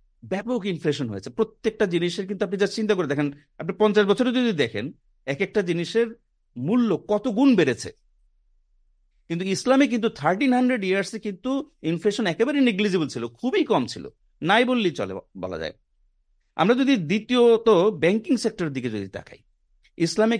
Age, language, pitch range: 50-69, Bengali, 160-225 Hz